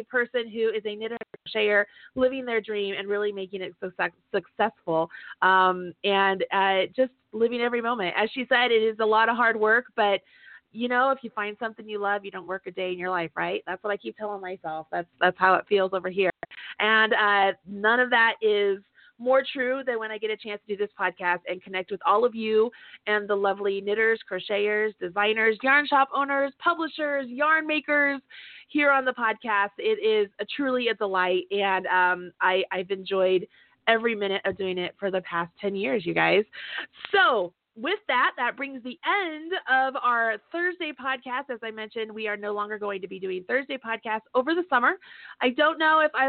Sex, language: female, English